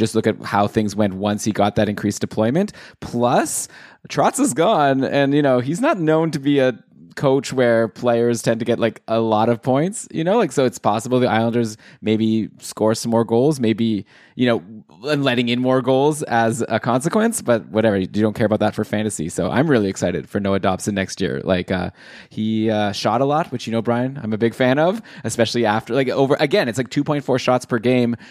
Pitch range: 110-135 Hz